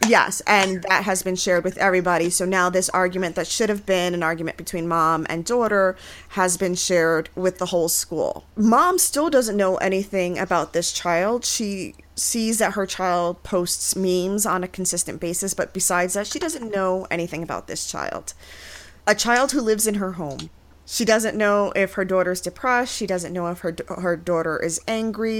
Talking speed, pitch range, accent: 190 wpm, 170-205 Hz, American